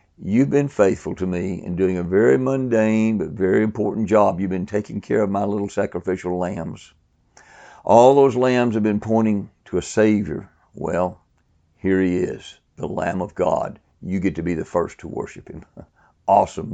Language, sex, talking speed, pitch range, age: English, male, 180 wpm, 90-120 Hz, 60-79